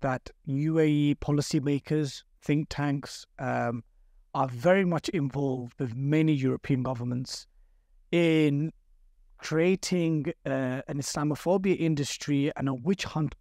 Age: 30-49